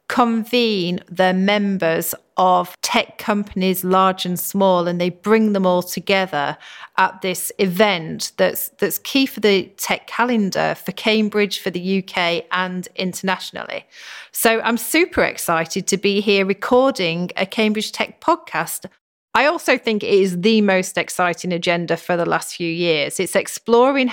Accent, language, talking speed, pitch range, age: British, English, 150 wpm, 175-215 Hz, 40-59